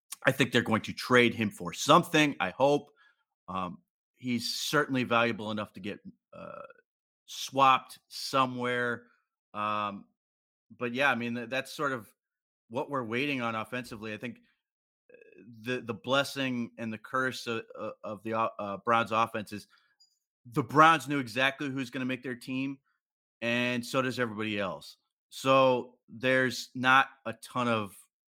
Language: English